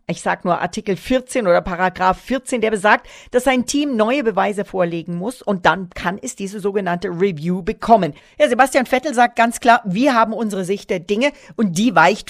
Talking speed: 195 wpm